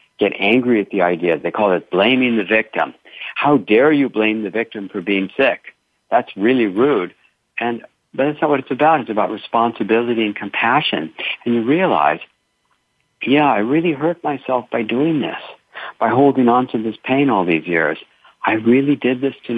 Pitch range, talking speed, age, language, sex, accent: 100-135 Hz, 185 wpm, 60-79, English, male, American